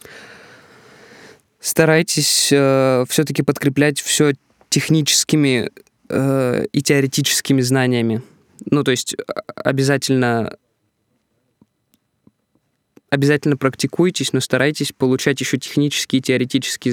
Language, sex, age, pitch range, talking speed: Russian, male, 20-39, 120-140 Hz, 80 wpm